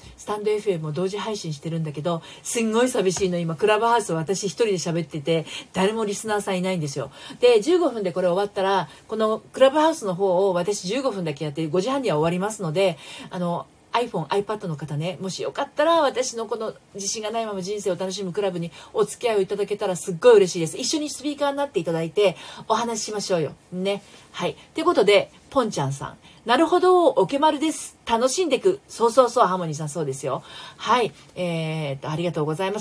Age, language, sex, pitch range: 40-59, Japanese, female, 175-245 Hz